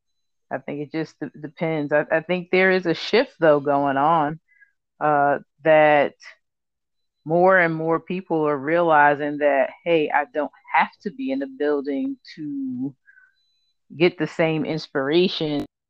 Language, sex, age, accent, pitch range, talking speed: English, female, 30-49, American, 150-185 Hz, 145 wpm